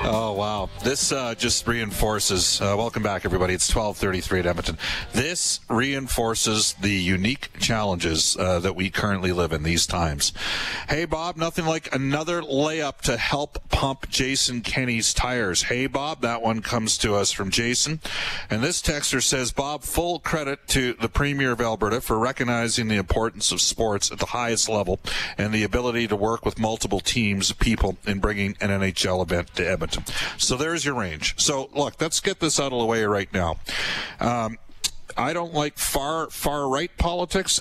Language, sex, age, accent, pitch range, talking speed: English, male, 40-59, American, 100-130 Hz, 175 wpm